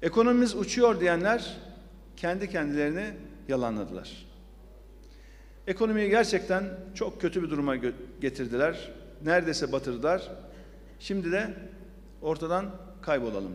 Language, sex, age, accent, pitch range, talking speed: Turkish, male, 50-69, native, 155-200 Hz, 85 wpm